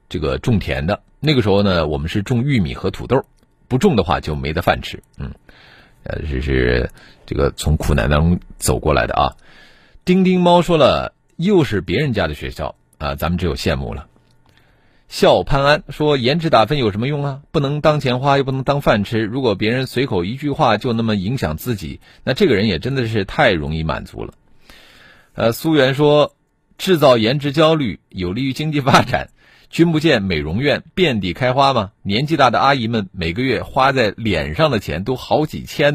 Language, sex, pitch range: Chinese, male, 85-145 Hz